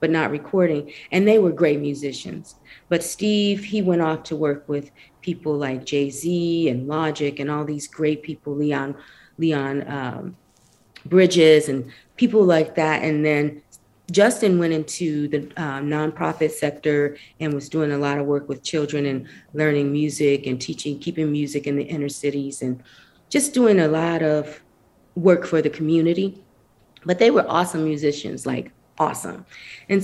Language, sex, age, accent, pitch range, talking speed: English, female, 30-49, American, 145-185 Hz, 160 wpm